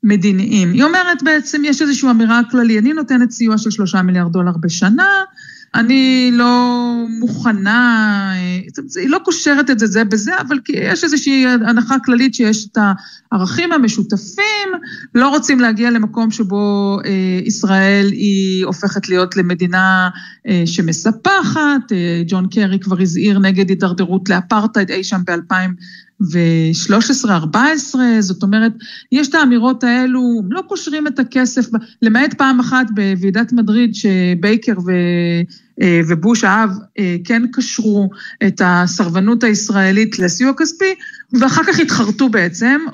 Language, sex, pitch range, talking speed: Hebrew, female, 200-260 Hz, 130 wpm